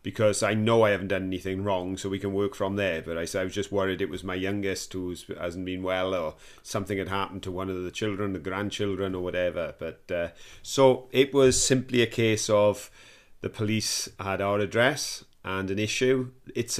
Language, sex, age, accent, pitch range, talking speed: English, male, 40-59, British, 100-115 Hz, 205 wpm